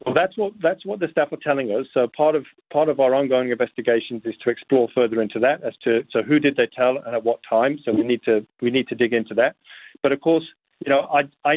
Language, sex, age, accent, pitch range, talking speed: English, male, 40-59, British, 120-145 Hz, 270 wpm